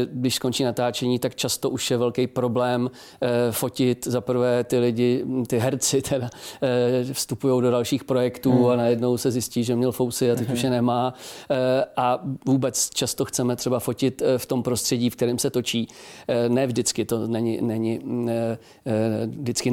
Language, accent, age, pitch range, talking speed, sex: Czech, native, 40-59, 120-130 Hz, 155 wpm, male